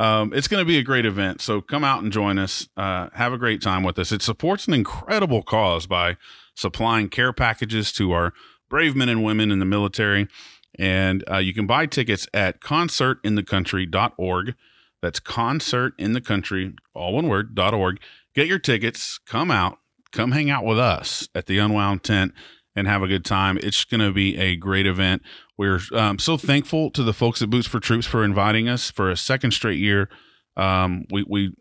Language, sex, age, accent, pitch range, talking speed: English, male, 30-49, American, 95-115 Hz, 190 wpm